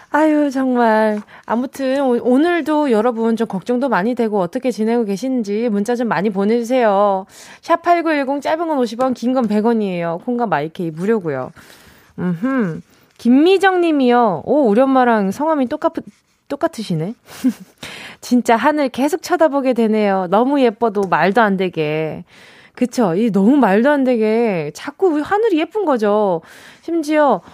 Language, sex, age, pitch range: Korean, female, 20-39, 205-295 Hz